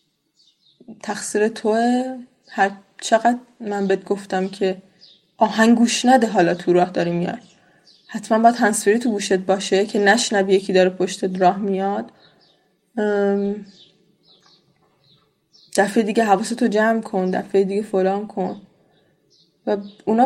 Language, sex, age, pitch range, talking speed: Persian, female, 10-29, 185-225 Hz, 120 wpm